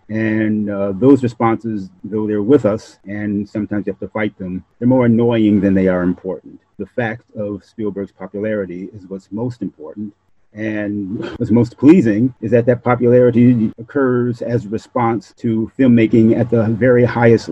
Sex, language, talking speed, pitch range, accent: male, English, 170 wpm, 100-115 Hz, American